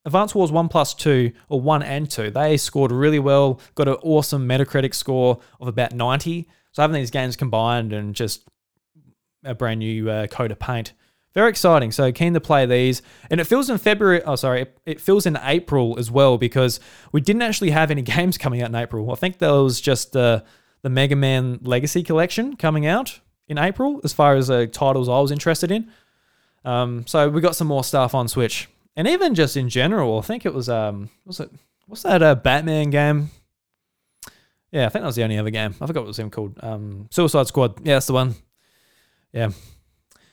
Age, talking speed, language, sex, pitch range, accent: 20-39, 210 wpm, English, male, 125-165 Hz, Australian